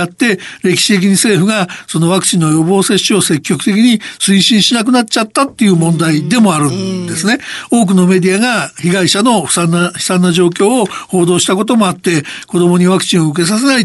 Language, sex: Japanese, male